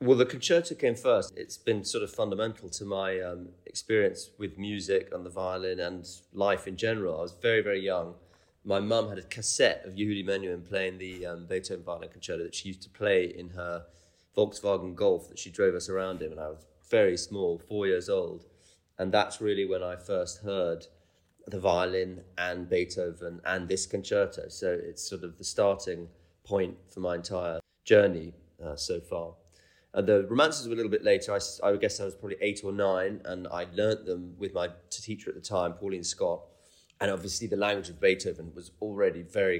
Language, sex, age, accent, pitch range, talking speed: English, male, 30-49, British, 90-105 Hz, 200 wpm